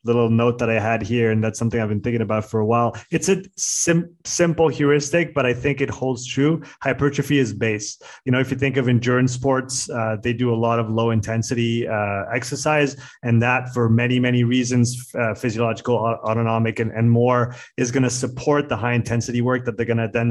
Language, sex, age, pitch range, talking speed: French, male, 20-39, 115-130 Hz, 210 wpm